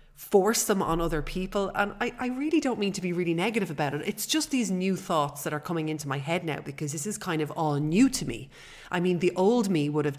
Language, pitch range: English, 155-205 Hz